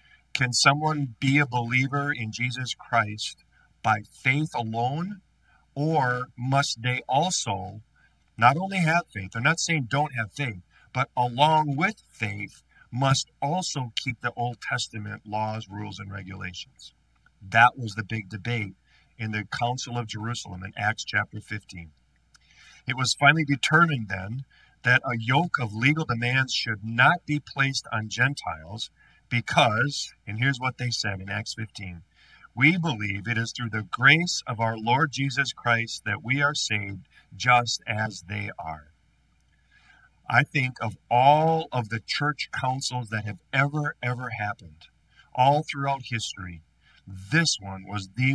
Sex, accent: male, American